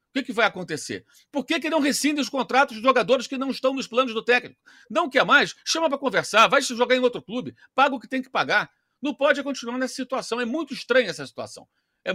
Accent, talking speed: Brazilian, 245 wpm